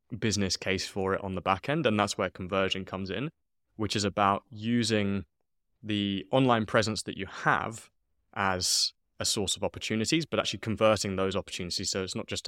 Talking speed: 185 wpm